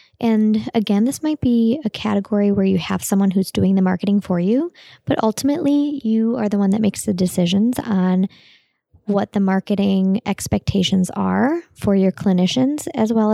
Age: 20-39